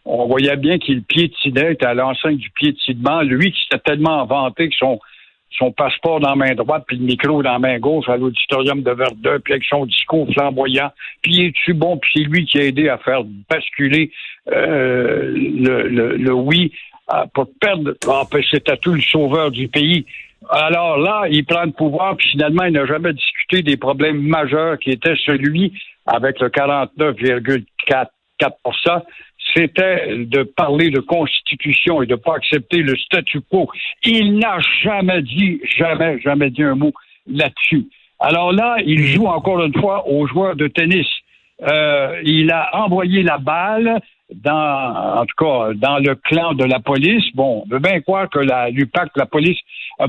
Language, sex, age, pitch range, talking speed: French, male, 60-79, 140-170 Hz, 180 wpm